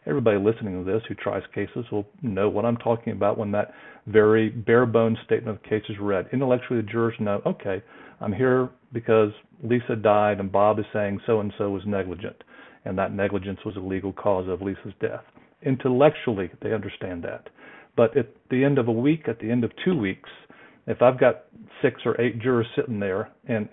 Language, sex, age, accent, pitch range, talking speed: English, male, 50-69, American, 105-120 Hz, 195 wpm